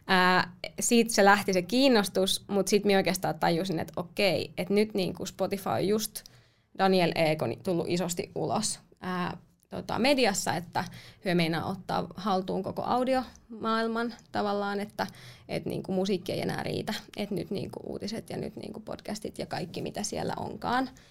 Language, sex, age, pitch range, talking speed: Finnish, female, 20-39, 185-225 Hz, 150 wpm